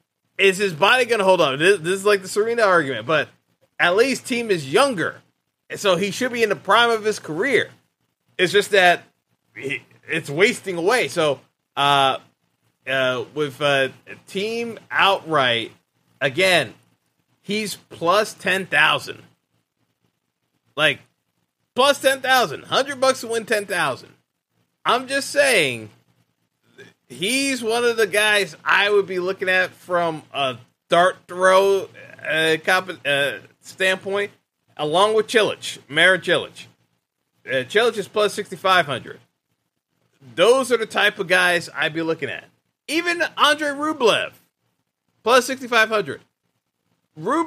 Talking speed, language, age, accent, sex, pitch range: 130 wpm, English, 30-49, American, male, 160-220 Hz